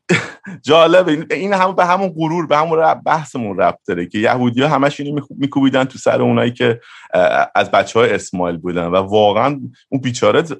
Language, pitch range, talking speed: Persian, 105-145 Hz, 170 wpm